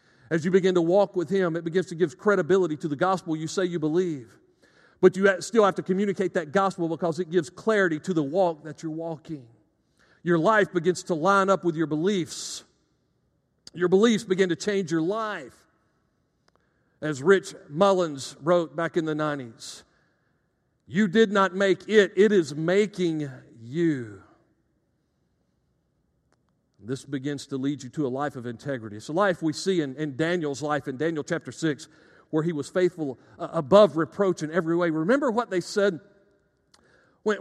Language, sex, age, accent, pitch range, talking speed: English, male, 50-69, American, 160-195 Hz, 175 wpm